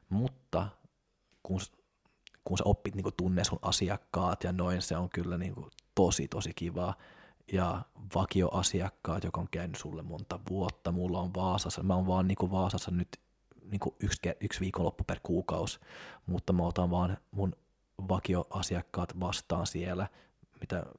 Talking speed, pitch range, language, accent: 145 wpm, 90-95 Hz, Finnish, native